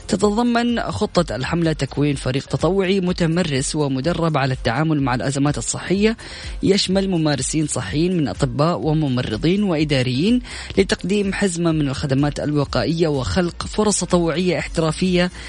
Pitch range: 140-175 Hz